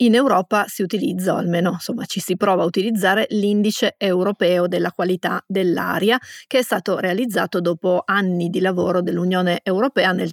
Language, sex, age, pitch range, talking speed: Italian, female, 30-49, 180-210 Hz, 165 wpm